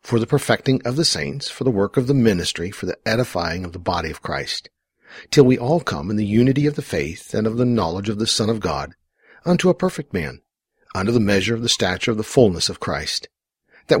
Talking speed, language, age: 235 wpm, English, 50-69